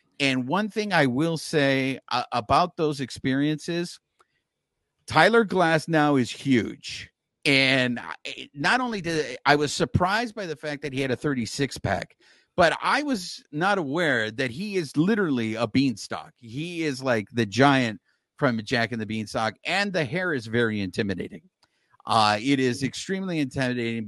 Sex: male